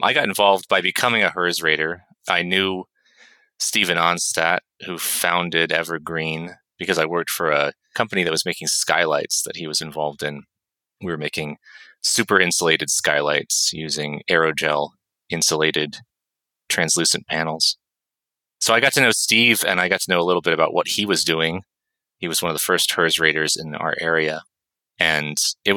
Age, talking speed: 30-49, 170 wpm